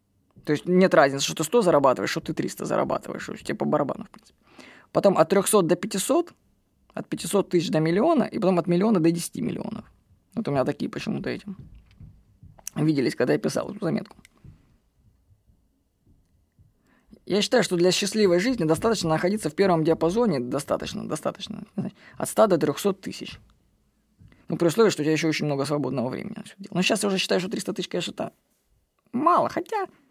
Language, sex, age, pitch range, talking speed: Russian, female, 20-39, 165-215 Hz, 175 wpm